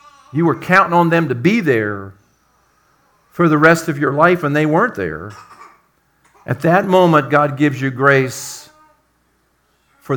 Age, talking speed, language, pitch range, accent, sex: 50-69, 155 wpm, English, 115-150 Hz, American, male